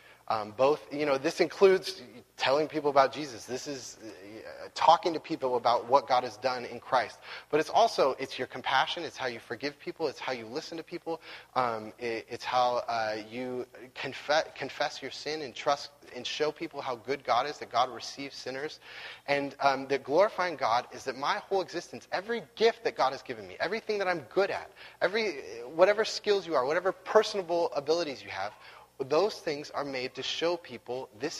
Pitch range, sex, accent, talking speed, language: 120-170 Hz, male, American, 195 wpm, English